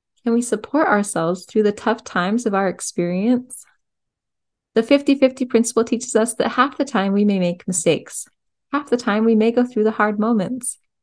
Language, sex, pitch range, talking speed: English, female, 180-225 Hz, 185 wpm